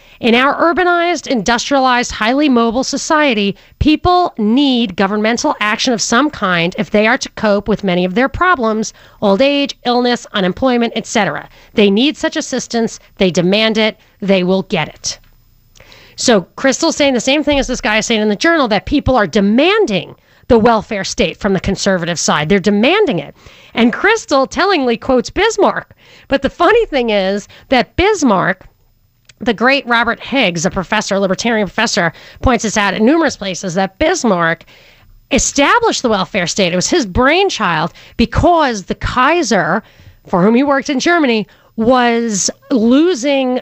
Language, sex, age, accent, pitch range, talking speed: English, female, 40-59, American, 205-275 Hz, 160 wpm